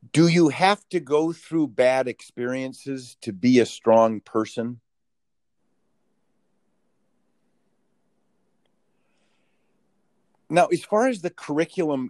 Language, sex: English, male